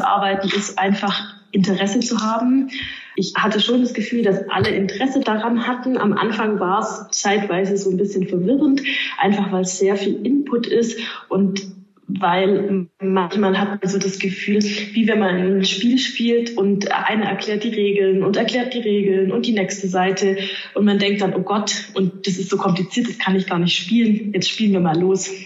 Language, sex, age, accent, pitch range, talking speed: German, female, 20-39, German, 185-210 Hz, 195 wpm